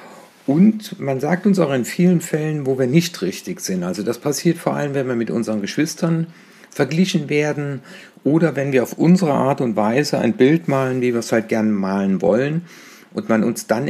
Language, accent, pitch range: German, German, 125-180 Hz